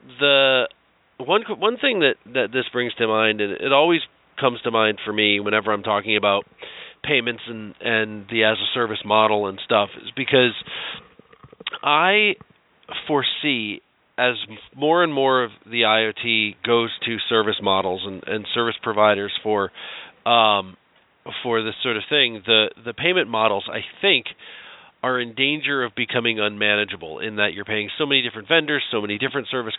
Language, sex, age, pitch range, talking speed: English, male, 40-59, 105-125 Hz, 165 wpm